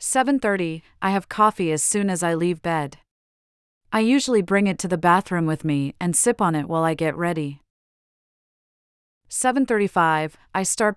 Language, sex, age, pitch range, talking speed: English, female, 40-59, 160-200 Hz, 160 wpm